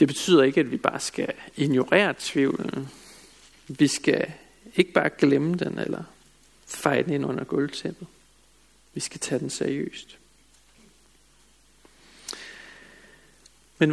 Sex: male